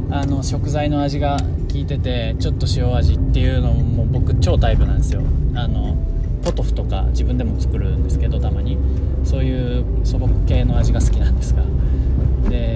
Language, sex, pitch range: Japanese, male, 75-100 Hz